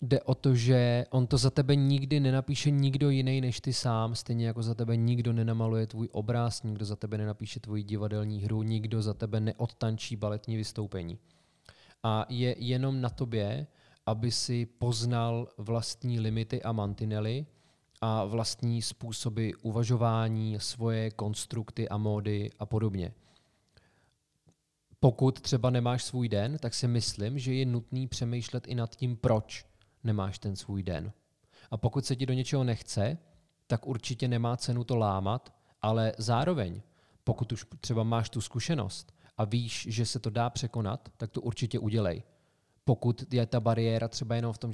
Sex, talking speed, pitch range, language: male, 160 wpm, 110-125 Hz, Czech